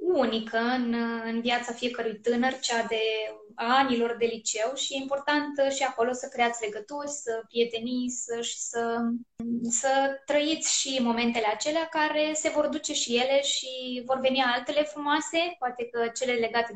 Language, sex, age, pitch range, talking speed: Romanian, female, 20-39, 230-270 Hz, 160 wpm